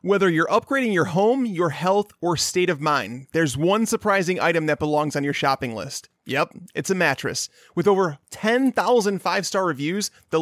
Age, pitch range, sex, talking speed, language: 30-49, 155-200 Hz, male, 180 wpm, English